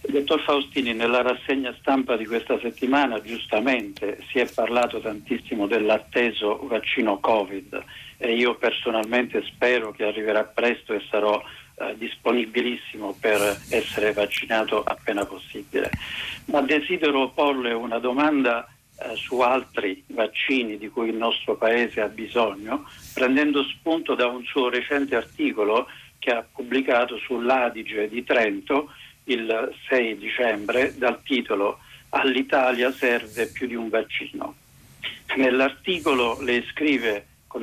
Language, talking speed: Italian, 120 wpm